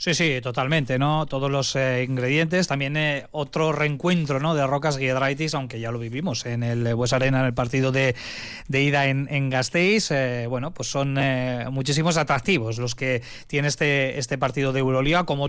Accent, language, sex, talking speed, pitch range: Spanish, Spanish, male, 190 wpm, 130-160 Hz